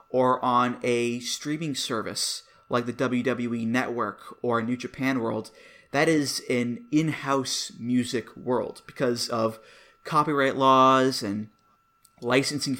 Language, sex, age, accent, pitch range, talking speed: English, male, 20-39, American, 120-145 Hz, 115 wpm